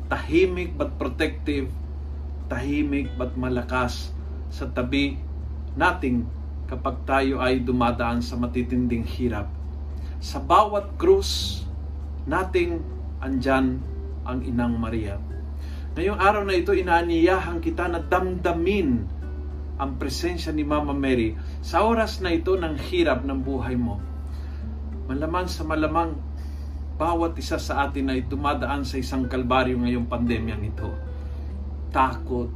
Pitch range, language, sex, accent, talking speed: 70-120 Hz, Filipino, male, native, 115 wpm